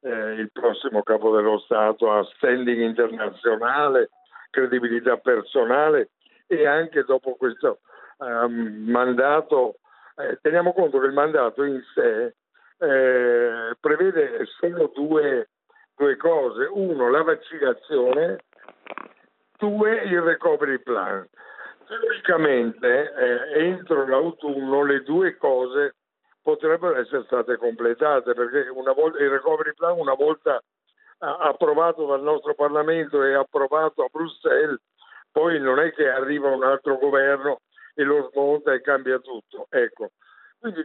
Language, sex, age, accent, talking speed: Italian, male, 60-79, native, 115 wpm